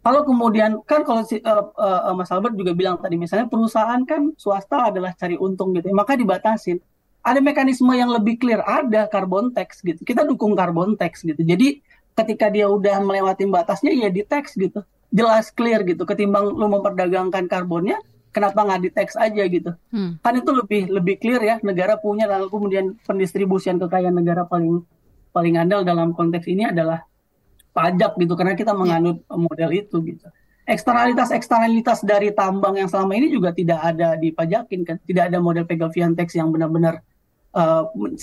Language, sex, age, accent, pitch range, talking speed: Indonesian, female, 30-49, native, 175-220 Hz, 165 wpm